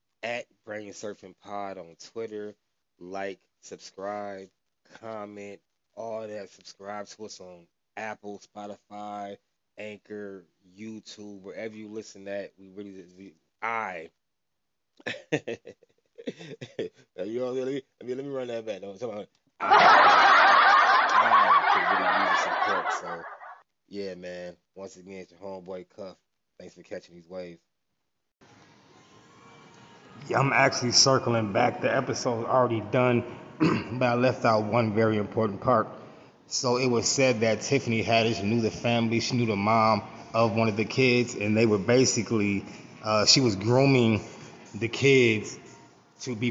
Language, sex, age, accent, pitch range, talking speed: English, male, 20-39, American, 100-120 Hz, 130 wpm